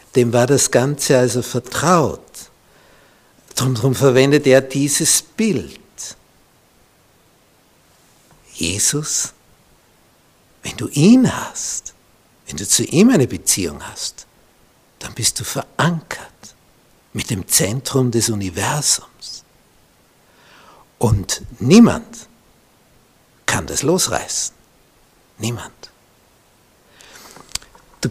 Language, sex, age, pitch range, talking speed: German, male, 60-79, 130-180 Hz, 85 wpm